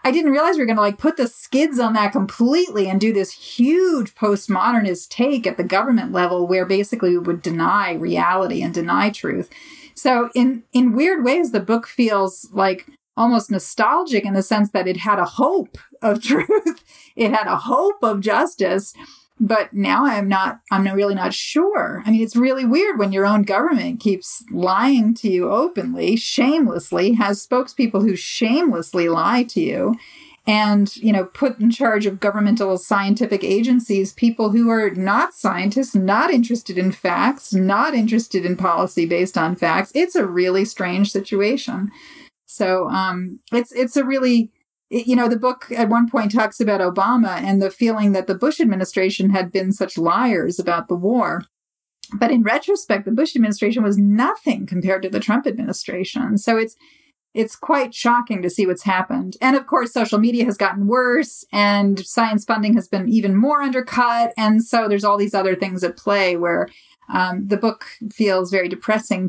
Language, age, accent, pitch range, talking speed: English, 40-59, American, 195-250 Hz, 180 wpm